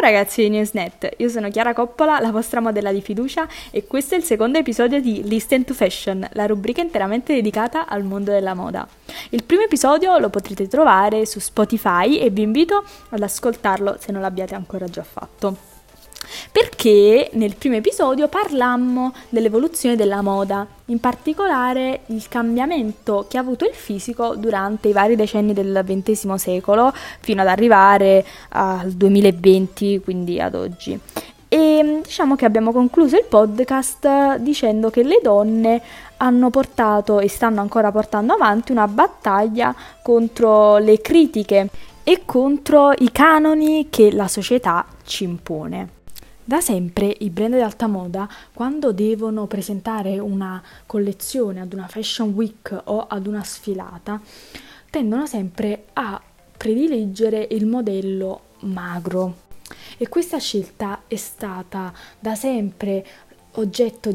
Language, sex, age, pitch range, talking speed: Italian, female, 20-39, 200-250 Hz, 140 wpm